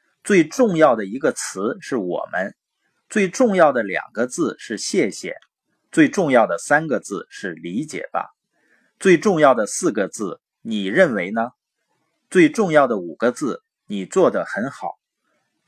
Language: Chinese